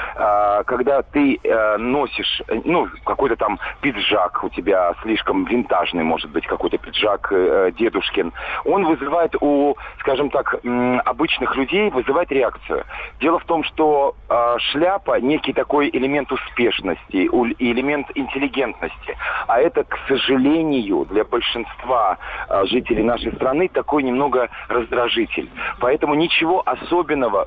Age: 40-59